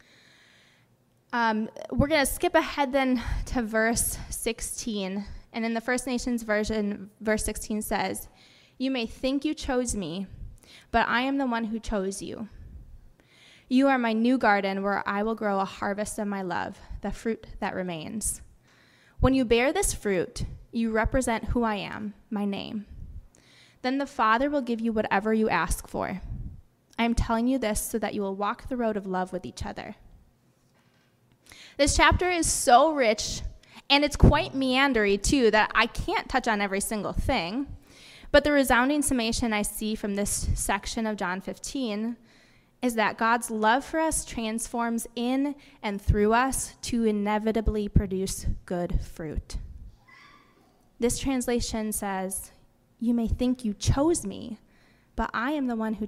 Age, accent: 20-39, American